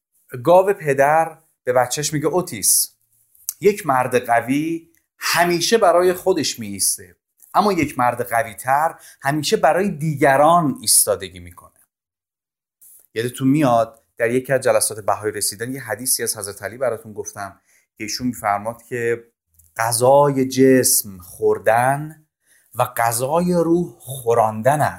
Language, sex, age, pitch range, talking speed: Persian, male, 30-49, 110-150 Hz, 115 wpm